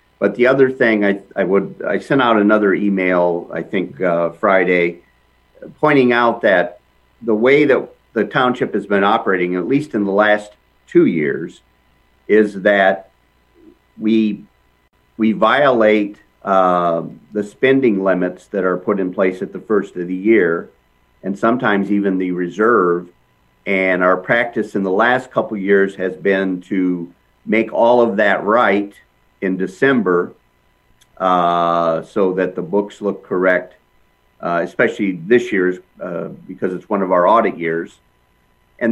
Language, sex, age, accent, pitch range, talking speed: English, male, 50-69, American, 85-105 Hz, 150 wpm